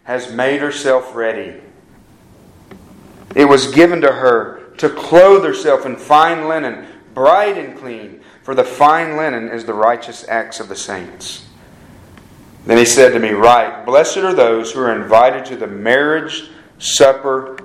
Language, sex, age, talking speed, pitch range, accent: English, male, 40-59, 155 wpm, 120-160 Hz, American